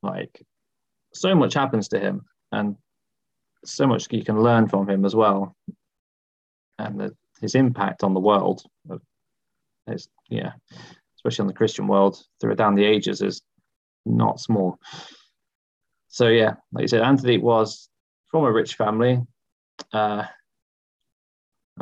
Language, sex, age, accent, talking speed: English, male, 20-39, British, 130 wpm